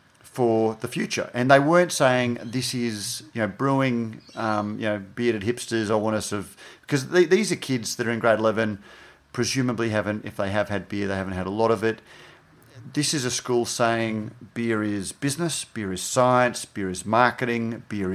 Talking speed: 200 wpm